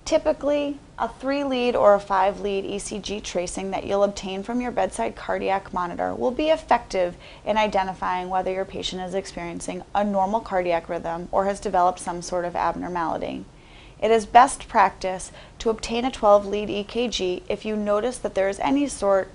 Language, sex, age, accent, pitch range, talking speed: English, female, 30-49, American, 185-230 Hz, 165 wpm